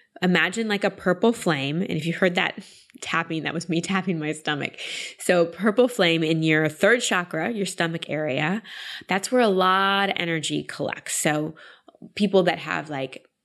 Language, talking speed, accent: English, 175 wpm, American